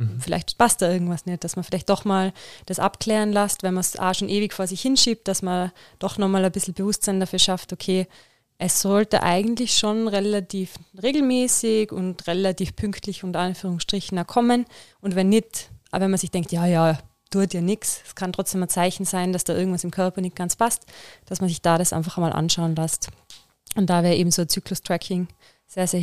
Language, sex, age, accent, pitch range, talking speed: German, female, 20-39, German, 175-200 Hz, 205 wpm